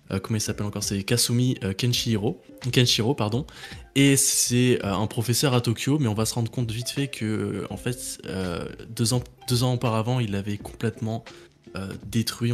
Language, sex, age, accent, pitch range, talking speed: French, male, 20-39, French, 100-120 Hz, 190 wpm